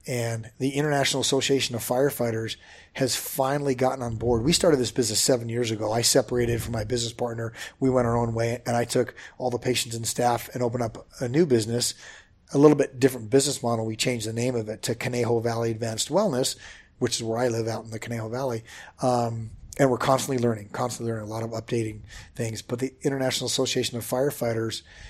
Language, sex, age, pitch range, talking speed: English, male, 40-59, 115-130 Hz, 210 wpm